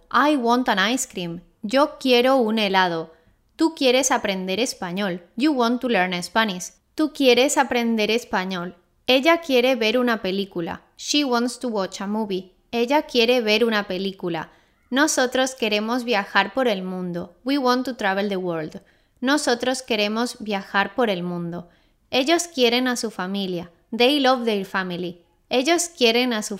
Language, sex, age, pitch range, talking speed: English, female, 20-39, 195-255 Hz, 155 wpm